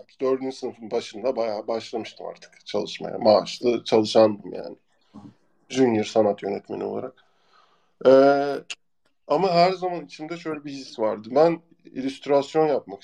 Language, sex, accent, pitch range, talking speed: Turkish, male, native, 125-150 Hz, 120 wpm